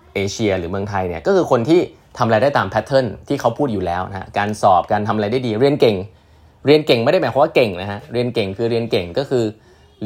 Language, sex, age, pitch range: Thai, male, 20-39, 95-125 Hz